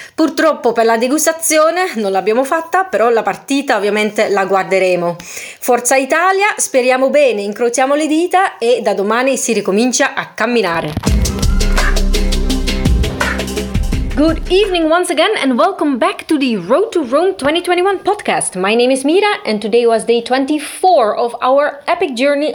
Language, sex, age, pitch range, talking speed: Italian, female, 30-49, 215-330 Hz, 145 wpm